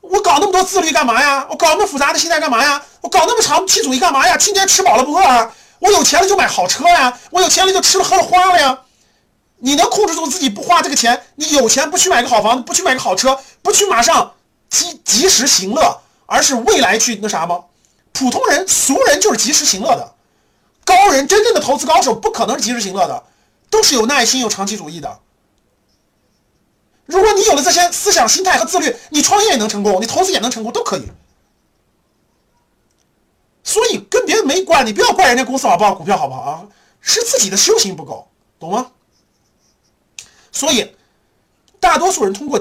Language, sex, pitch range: Chinese, male, 250-380 Hz